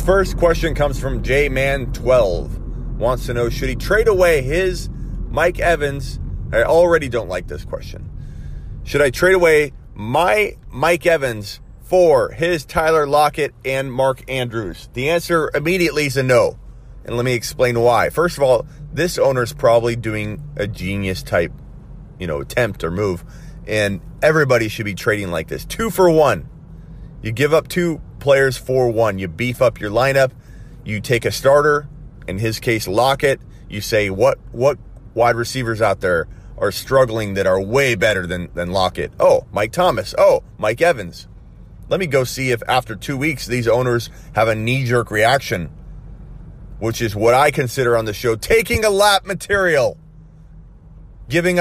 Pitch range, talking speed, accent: 115-155 Hz, 165 wpm, American